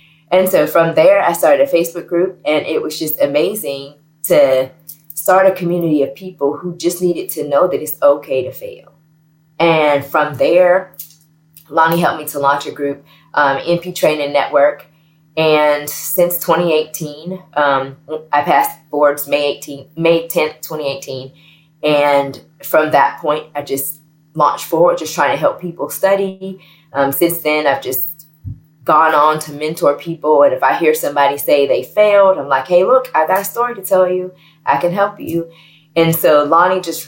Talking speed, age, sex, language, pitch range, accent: 170 wpm, 20-39, female, English, 145-170 Hz, American